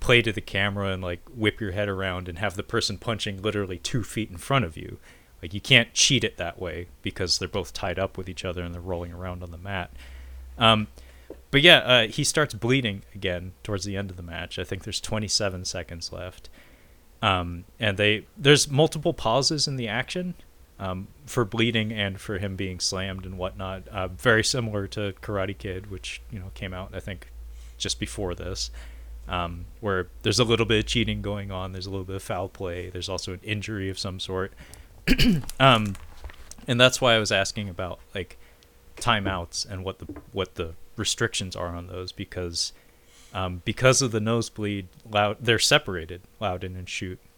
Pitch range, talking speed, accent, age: 90-105 Hz, 195 wpm, American, 30-49